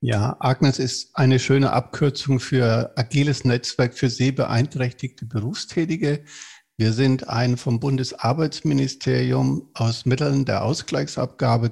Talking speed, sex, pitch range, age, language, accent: 110 wpm, male, 120-145 Hz, 50-69, German, German